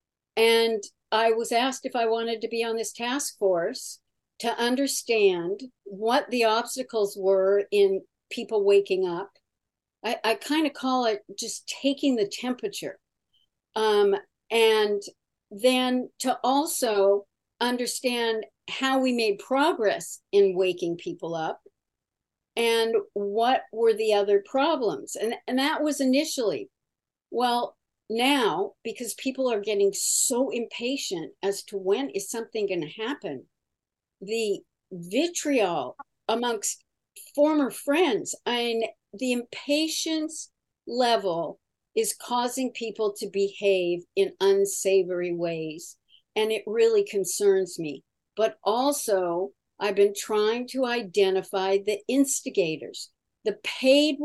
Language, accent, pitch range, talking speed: English, American, 205-285 Hz, 115 wpm